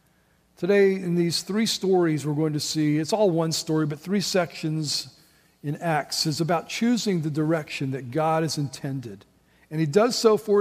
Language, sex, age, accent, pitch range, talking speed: English, male, 50-69, American, 155-195 Hz, 180 wpm